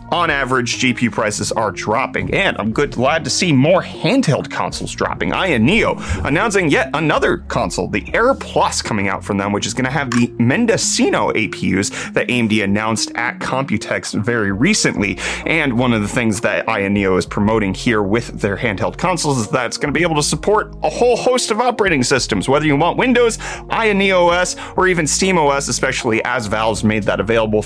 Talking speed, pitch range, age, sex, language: 195 wpm, 105-145 Hz, 30-49, male, English